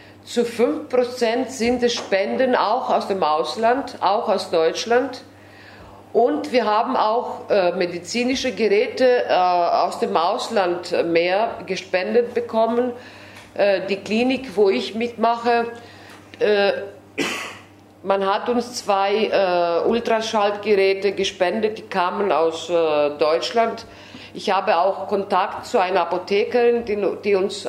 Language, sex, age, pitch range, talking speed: German, female, 50-69, 175-230 Hz, 120 wpm